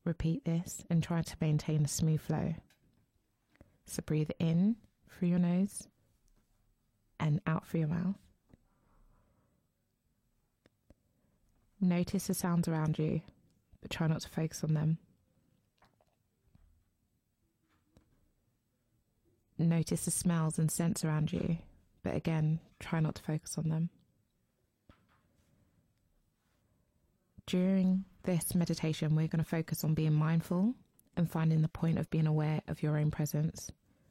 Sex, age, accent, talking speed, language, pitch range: female, 20-39, British, 120 wpm, English, 115-165 Hz